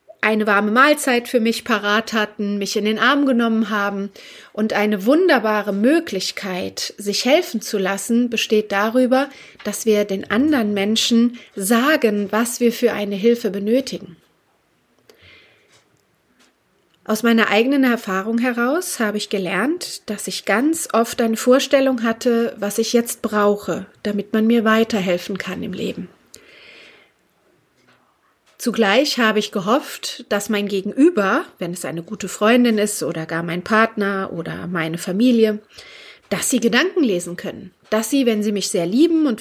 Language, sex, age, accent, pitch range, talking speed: German, female, 30-49, German, 205-255 Hz, 145 wpm